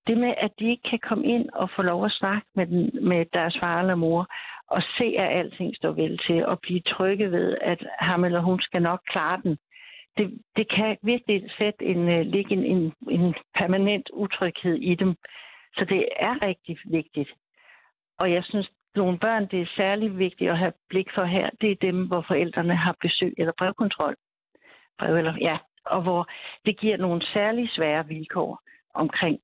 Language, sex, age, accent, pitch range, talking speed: Danish, female, 60-79, native, 170-215 Hz, 190 wpm